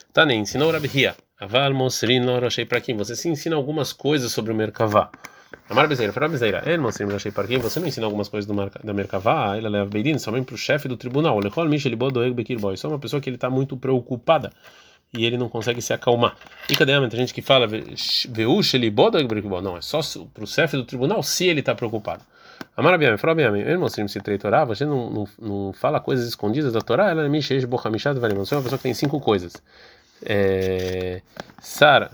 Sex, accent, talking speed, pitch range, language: male, Brazilian, 215 wpm, 105-135 Hz, Portuguese